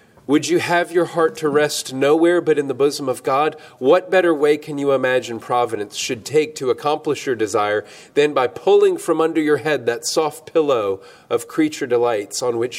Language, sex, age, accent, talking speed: English, male, 40-59, American, 195 wpm